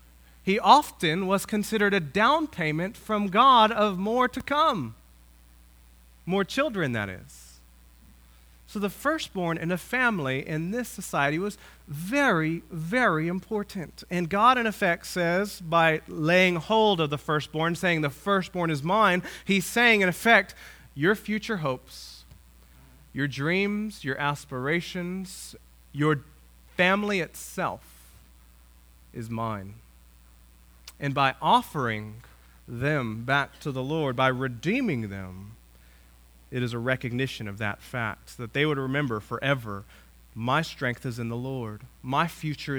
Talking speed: 130 wpm